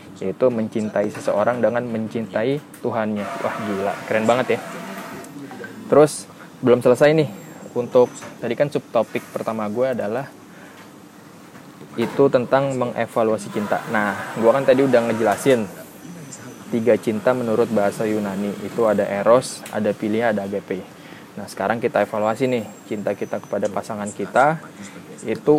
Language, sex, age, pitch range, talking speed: Indonesian, male, 20-39, 105-125 Hz, 130 wpm